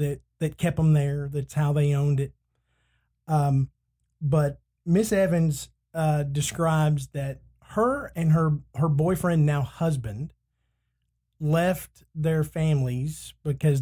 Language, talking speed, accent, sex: English, 120 wpm, American, male